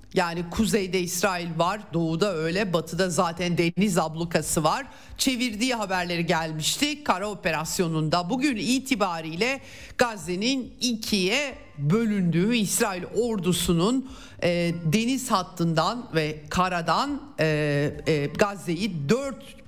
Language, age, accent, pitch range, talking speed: Turkish, 50-69, native, 170-230 Hz, 100 wpm